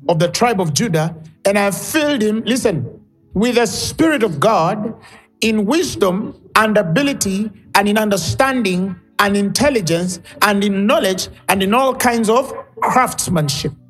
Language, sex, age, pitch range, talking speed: English, male, 50-69, 165-225 Hz, 145 wpm